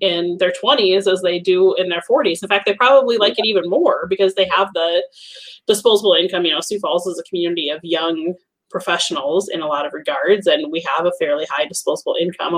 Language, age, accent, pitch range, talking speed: English, 30-49, American, 175-255 Hz, 220 wpm